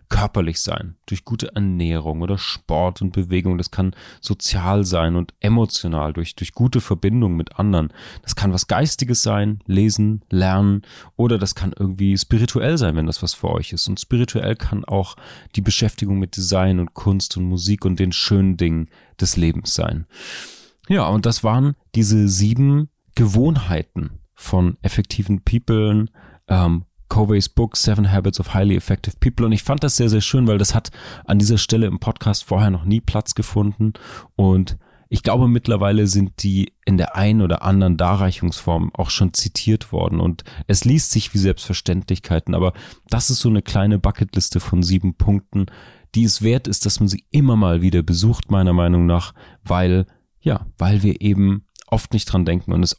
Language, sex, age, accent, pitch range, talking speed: English, male, 30-49, German, 90-110 Hz, 175 wpm